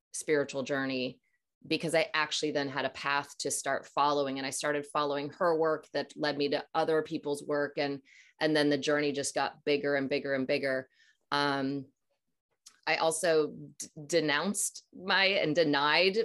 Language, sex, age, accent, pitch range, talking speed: English, female, 20-39, American, 145-185 Hz, 165 wpm